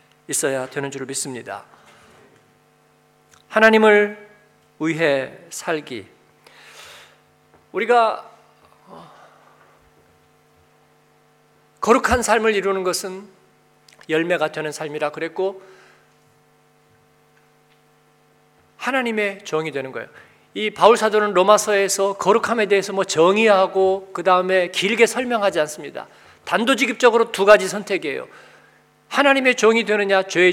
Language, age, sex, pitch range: Korean, 40-59, male, 165-220 Hz